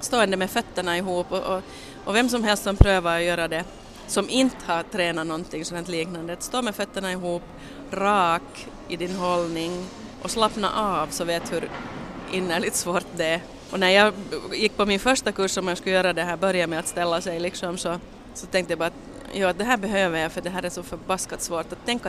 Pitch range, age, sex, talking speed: 170-200 Hz, 30-49, female, 215 wpm